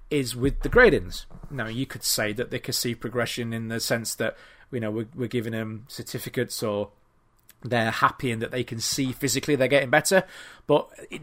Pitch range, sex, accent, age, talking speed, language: 120-150 Hz, male, British, 30-49, 205 wpm, English